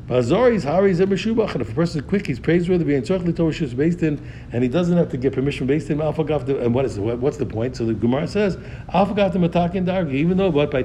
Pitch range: 135-180 Hz